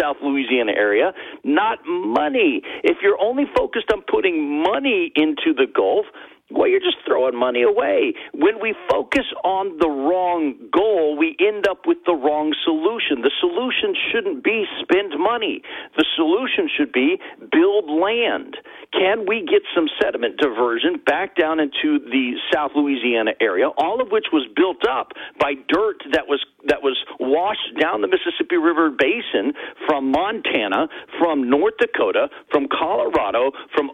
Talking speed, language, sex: 150 wpm, English, male